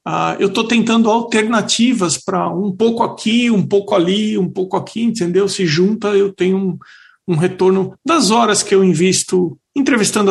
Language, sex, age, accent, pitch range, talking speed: Portuguese, male, 50-69, Brazilian, 165-205 Hz, 165 wpm